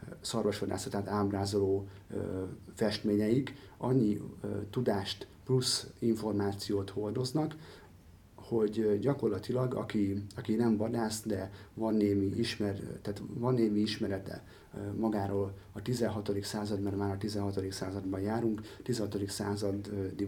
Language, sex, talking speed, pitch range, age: Hungarian, male, 100 wpm, 100-110 Hz, 30-49